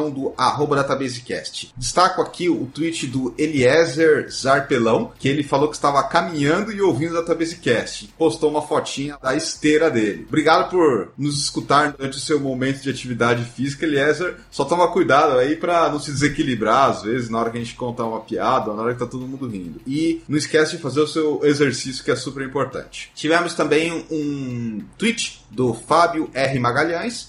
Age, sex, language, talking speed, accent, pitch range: 30-49, male, English, 185 wpm, Brazilian, 120-155 Hz